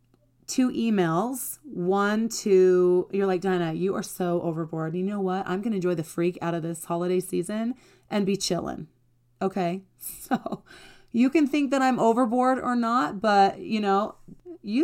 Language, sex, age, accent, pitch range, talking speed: English, female, 30-49, American, 175-230 Hz, 175 wpm